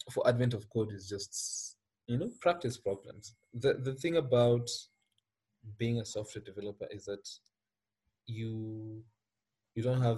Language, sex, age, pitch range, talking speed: English, male, 20-39, 105-125 Hz, 140 wpm